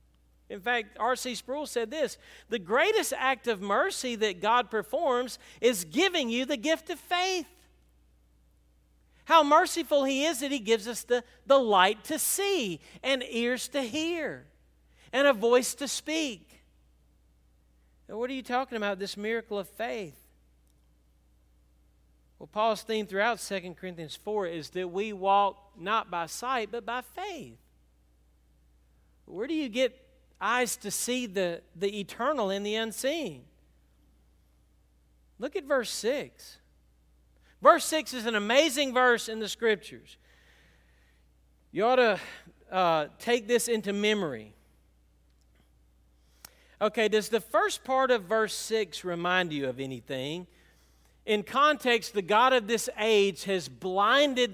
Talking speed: 140 wpm